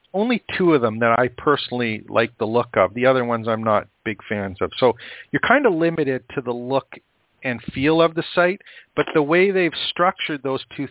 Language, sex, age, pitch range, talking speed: English, male, 50-69, 125-150 Hz, 215 wpm